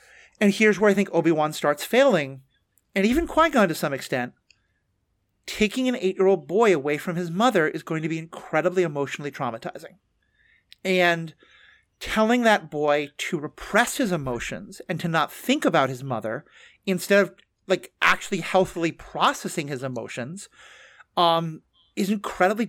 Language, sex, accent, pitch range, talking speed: English, male, American, 155-215 Hz, 145 wpm